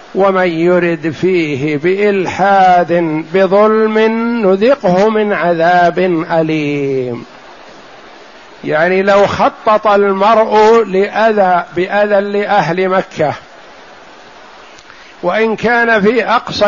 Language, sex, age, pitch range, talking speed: Arabic, male, 50-69, 155-195 Hz, 70 wpm